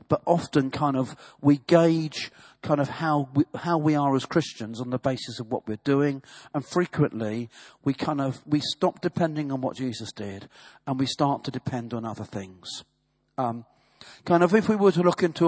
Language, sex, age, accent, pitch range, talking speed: English, male, 50-69, British, 120-155 Hz, 200 wpm